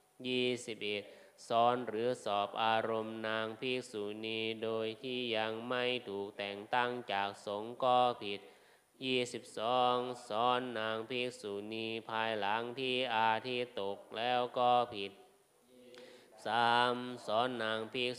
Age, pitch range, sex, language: 20-39, 110-125 Hz, male, Thai